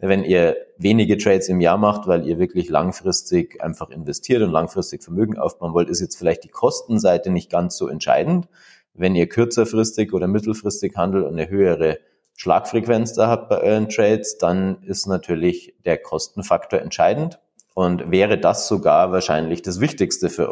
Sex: male